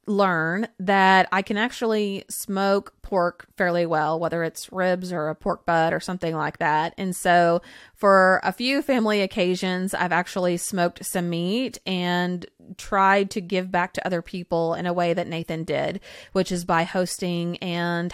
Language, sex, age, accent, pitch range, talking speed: English, female, 20-39, American, 170-200 Hz, 170 wpm